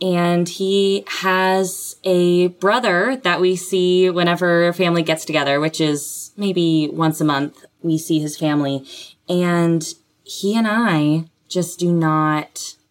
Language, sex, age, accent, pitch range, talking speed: English, female, 20-39, American, 155-200 Hz, 140 wpm